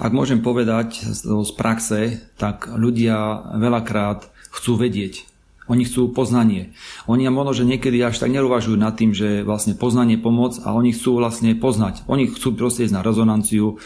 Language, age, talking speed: Slovak, 40-59, 160 wpm